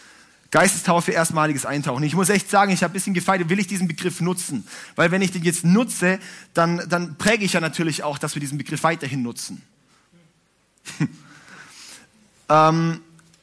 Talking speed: 165 wpm